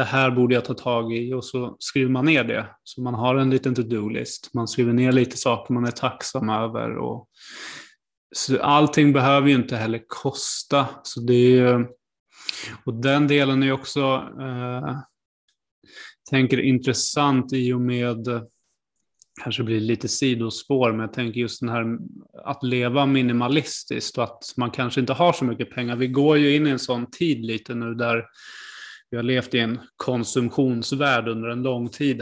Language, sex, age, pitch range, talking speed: Swedish, male, 20-39, 120-135 Hz, 175 wpm